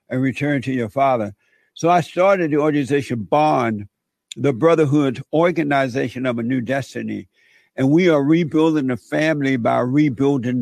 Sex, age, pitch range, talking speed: male, 60-79, 130-155 Hz, 145 wpm